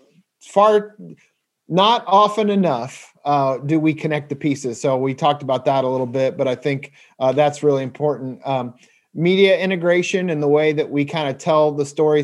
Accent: American